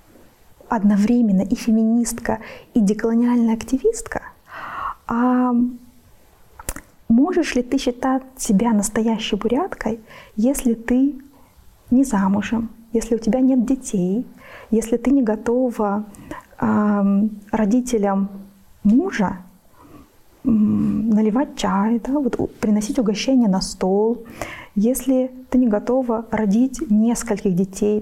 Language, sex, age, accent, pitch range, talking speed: Russian, female, 20-39, native, 210-245 Hz, 90 wpm